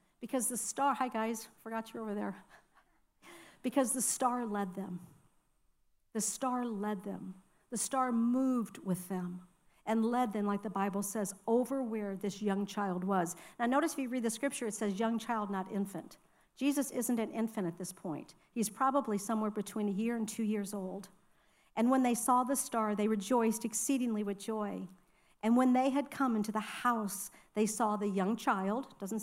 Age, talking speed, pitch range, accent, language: 50-69, 185 wpm, 200-245 Hz, American, English